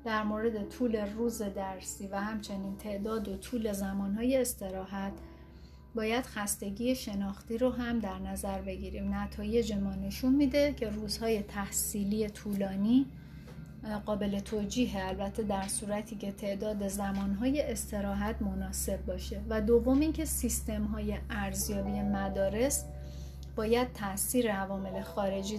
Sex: female